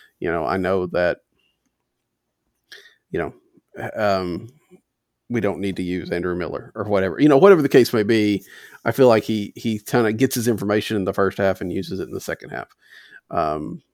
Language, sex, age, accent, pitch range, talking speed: English, male, 40-59, American, 95-130 Hz, 200 wpm